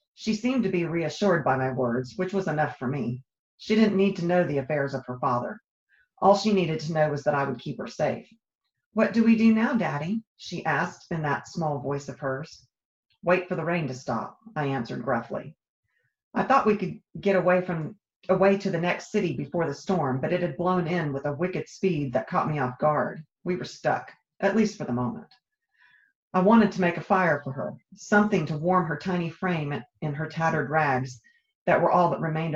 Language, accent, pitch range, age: English, American, 140-185 Hz, 40-59